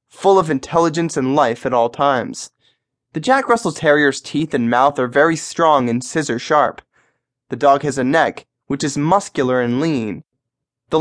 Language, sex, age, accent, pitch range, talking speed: English, male, 20-39, American, 130-165 Hz, 170 wpm